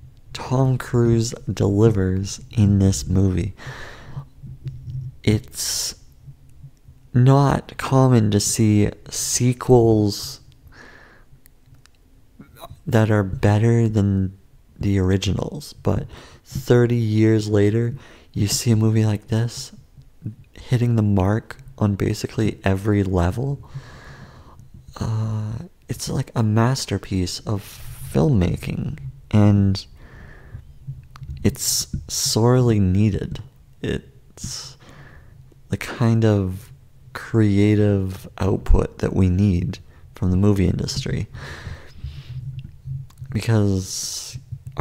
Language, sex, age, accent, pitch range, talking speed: English, male, 30-49, American, 100-125 Hz, 80 wpm